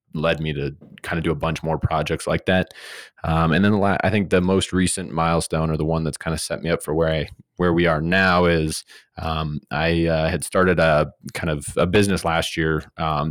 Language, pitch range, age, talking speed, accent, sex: English, 80-85 Hz, 20-39, 230 wpm, American, male